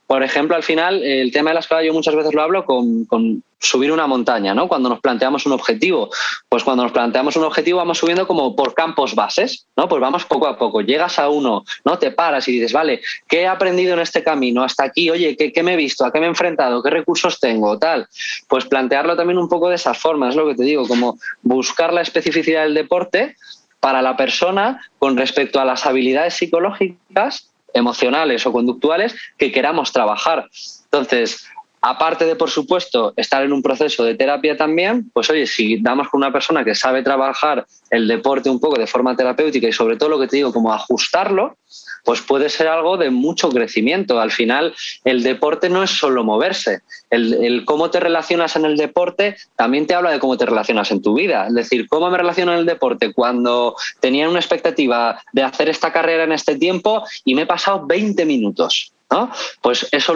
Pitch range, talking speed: 135-175 Hz, 205 wpm